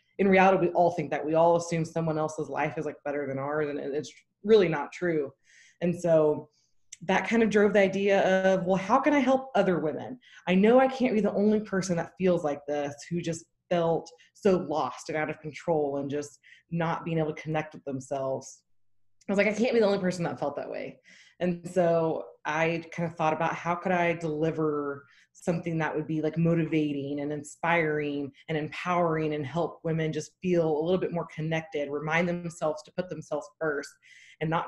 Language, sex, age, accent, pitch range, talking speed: English, female, 20-39, American, 155-185 Hz, 210 wpm